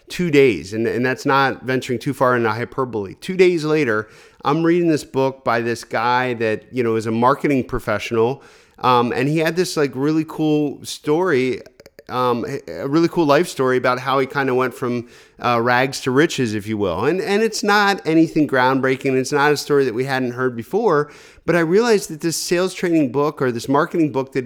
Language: English